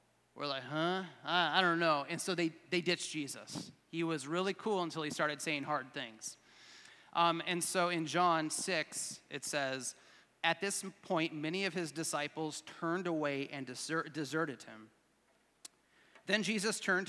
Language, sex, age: English, male, 30-49